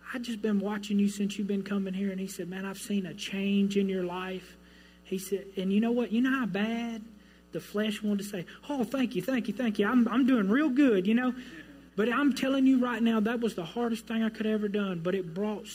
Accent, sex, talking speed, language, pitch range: American, male, 265 wpm, English, 190-230 Hz